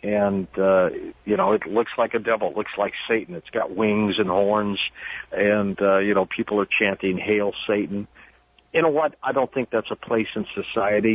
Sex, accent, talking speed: male, American, 205 wpm